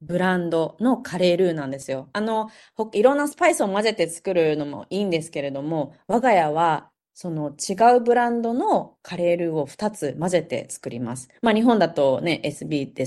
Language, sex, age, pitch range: Japanese, female, 20-39, 150-220 Hz